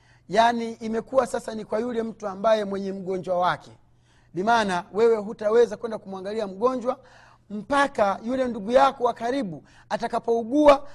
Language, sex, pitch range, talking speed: Swahili, male, 170-235 Hz, 135 wpm